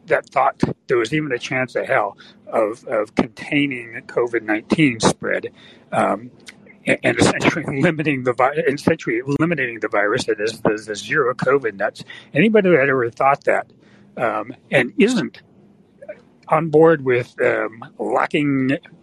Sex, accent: male, American